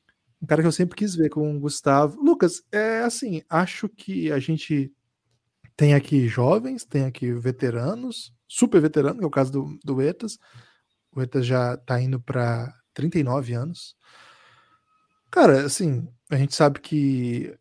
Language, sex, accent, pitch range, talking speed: Portuguese, male, Brazilian, 130-175 Hz, 155 wpm